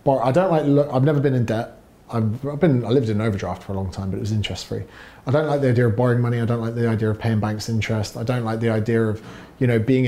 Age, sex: 30-49, male